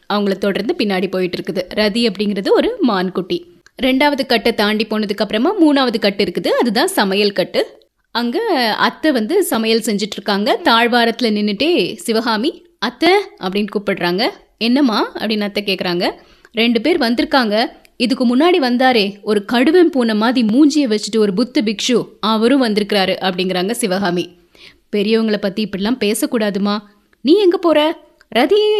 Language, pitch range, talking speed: Tamil, 205-275 Hz, 130 wpm